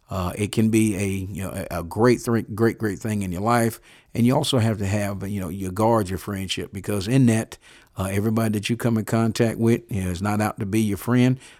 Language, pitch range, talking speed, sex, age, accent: English, 100-115 Hz, 245 wpm, male, 50-69, American